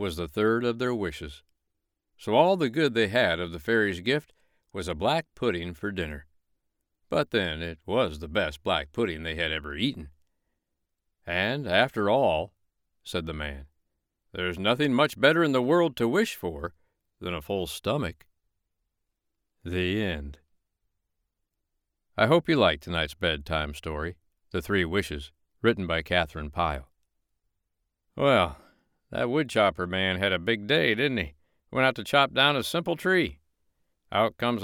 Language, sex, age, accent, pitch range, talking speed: English, male, 60-79, American, 80-120 Hz, 155 wpm